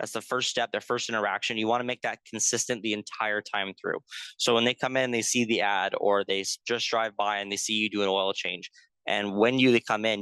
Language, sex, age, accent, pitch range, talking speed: English, male, 20-39, American, 100-115 Hz, 260 wpm